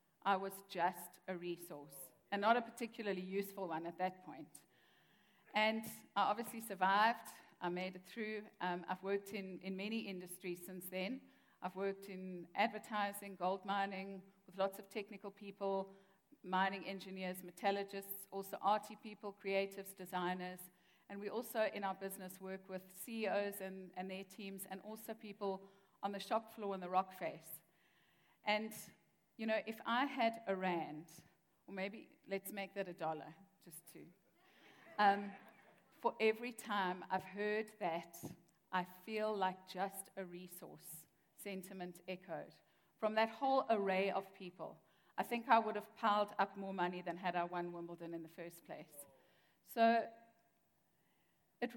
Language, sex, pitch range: English, female, 180-210 Hz